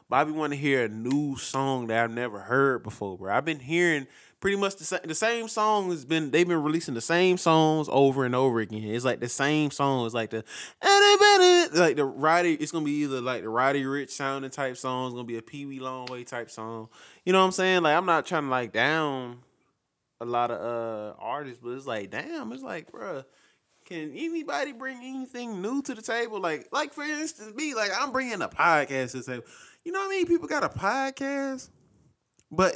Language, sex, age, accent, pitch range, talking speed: English, male, 20-39, American, 120-170 Hz, 220 wpm